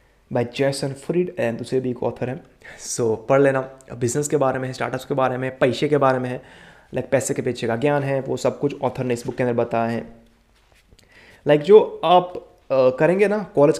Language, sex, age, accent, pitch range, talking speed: Hindi, male, 20-39, native, 125-145 Hz, 225 wpm